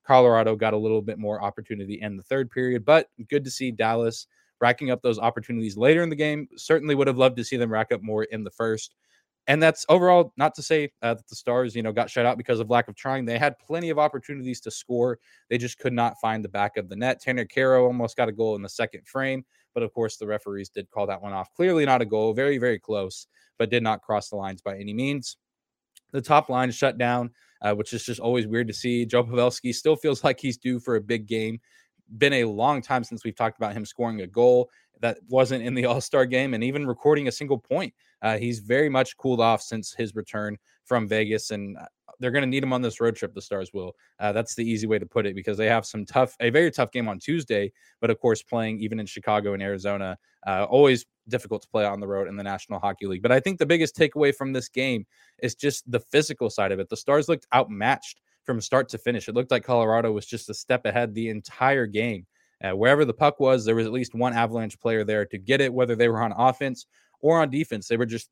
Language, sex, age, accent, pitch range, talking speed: English, male, 20-39, American, 110-130 Hz, 250 wpm